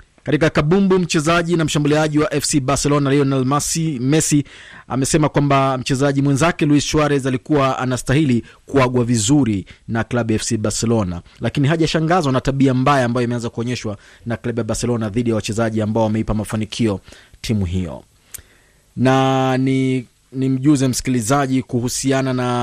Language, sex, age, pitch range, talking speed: Swahili, male, 30-49, 120-145 Hz, 135 wpm